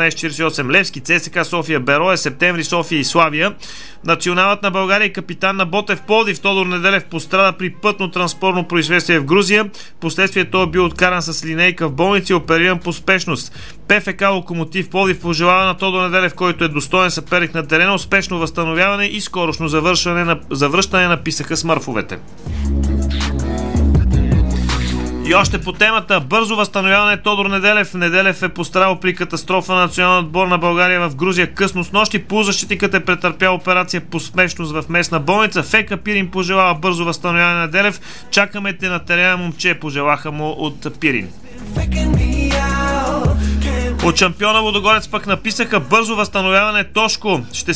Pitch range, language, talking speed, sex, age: 165-195 Hz, Bulgarian, 150 wpm, male, 30-49